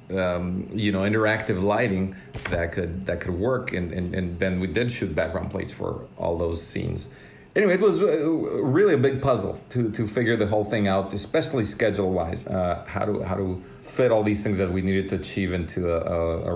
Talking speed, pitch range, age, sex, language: 210 wpm, 100-125 Hz, 40-59, male, English